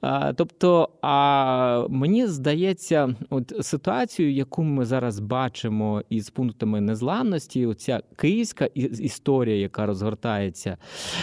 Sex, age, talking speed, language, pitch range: male, 20-39, 95 wpm, Ukrainian, 115-155 Hz